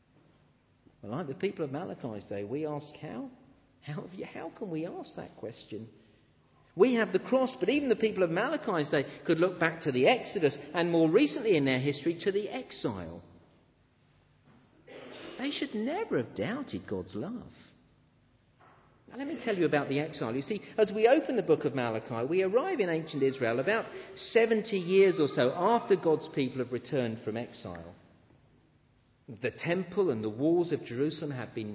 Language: English